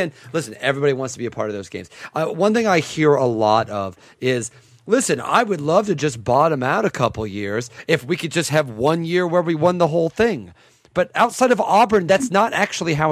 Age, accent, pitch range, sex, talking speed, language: 30-49, American, 125-190 Hz, male, 240 wpm, English